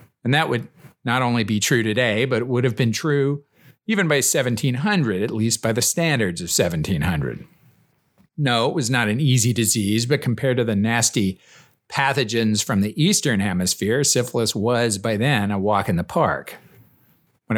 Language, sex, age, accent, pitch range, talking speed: English, male, 50-69, American, 105-130 Hz, 175 wpm